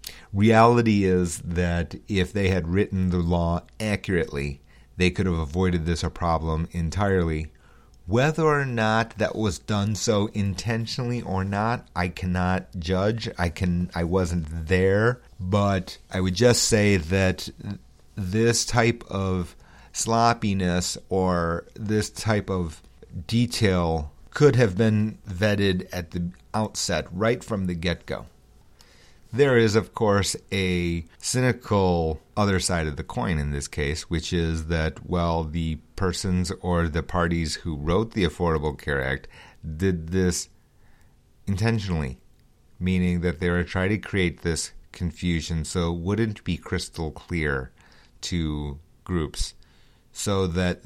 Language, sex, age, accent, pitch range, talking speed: English, male, 40-59, American, 85-105 Hz, 135 wpm